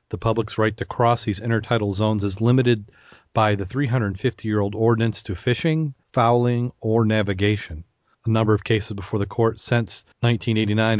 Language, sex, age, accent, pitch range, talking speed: English, male, 40-59, American, 105-120 Hz, 155 wpm